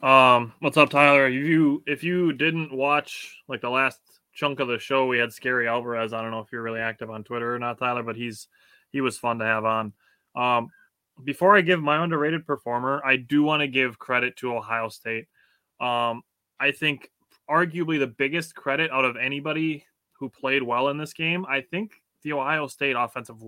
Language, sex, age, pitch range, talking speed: English, male, 20-39, 115-135 Hz, 200 wpm